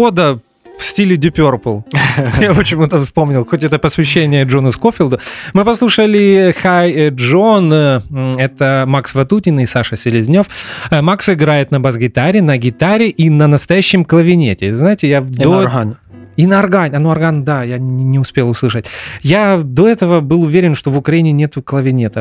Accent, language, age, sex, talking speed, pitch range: native, Russian, 20-39, male, 150 wpm, 125-170 Hz